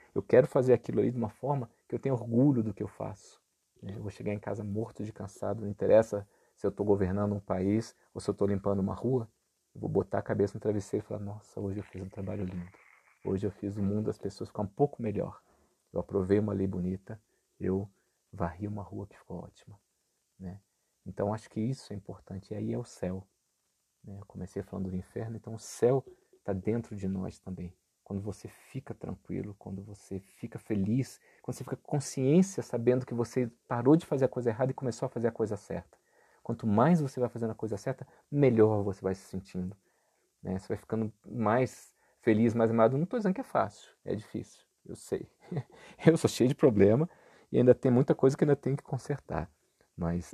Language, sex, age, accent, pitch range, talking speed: Portuguese, male, 40-59, Brazilian, 100-120 Hz, 215 wpm